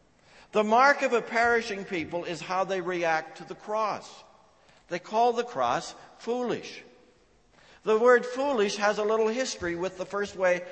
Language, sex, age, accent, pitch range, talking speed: English, male, 60-79, American, 175-225 Hz, 160 wpm